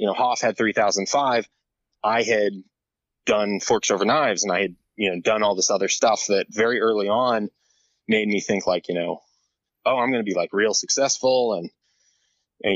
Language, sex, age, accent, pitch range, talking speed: English, male, 20-39, American, 95-110 Hz, 195 wpm